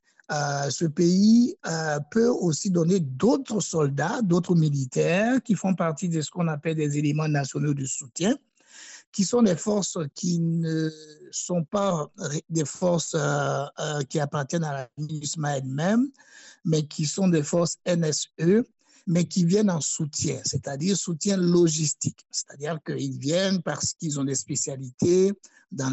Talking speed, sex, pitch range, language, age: 145 wpm, male, 145-185 Hz, German, 60-79